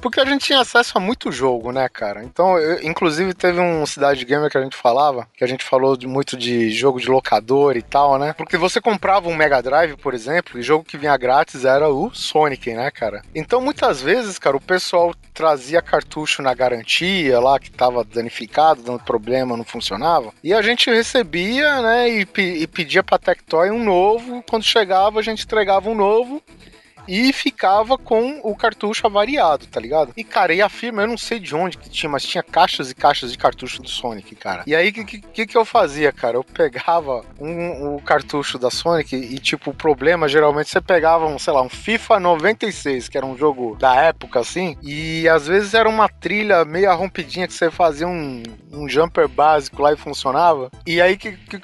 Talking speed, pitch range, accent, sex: 200 wpm, 140-205 Hz, Brazilian, male